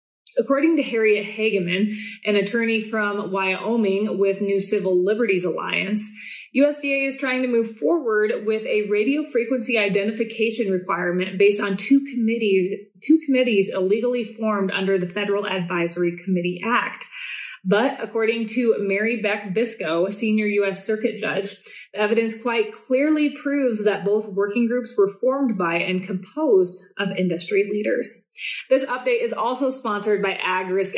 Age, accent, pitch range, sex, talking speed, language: 30-49, American, 195-240 Hz, female, 145 wpm, English